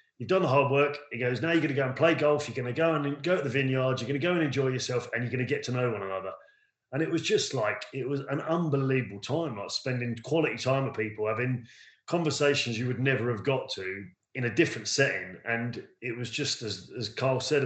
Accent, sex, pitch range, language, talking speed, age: British, male, 115-140 Hz, English, 260 wpm, 30-49